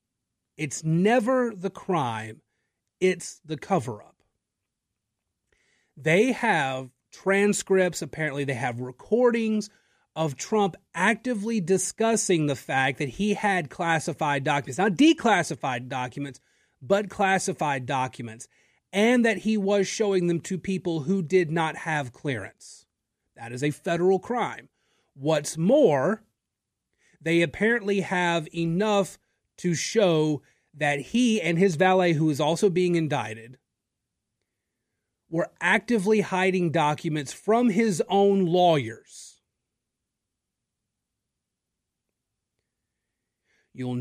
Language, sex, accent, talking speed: English, male, American, 105 wpm